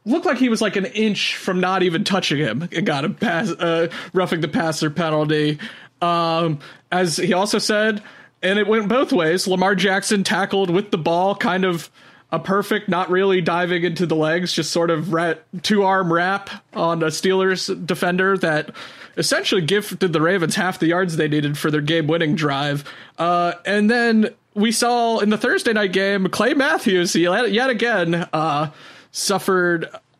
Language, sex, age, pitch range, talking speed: English, male, 30-49, 155-195 Hz, 175 wpm